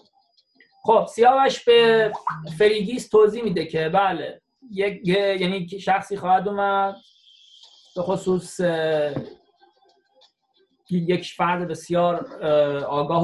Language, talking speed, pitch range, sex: Persian, 85 wpm, 165-225 Hz, male